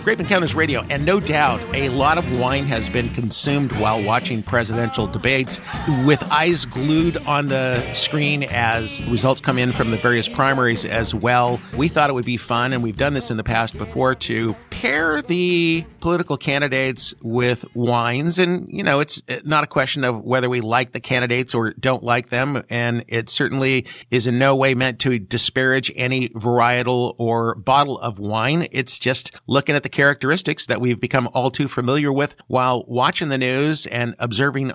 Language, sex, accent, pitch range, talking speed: English, male, American, 120-150 Hz, 185 wpm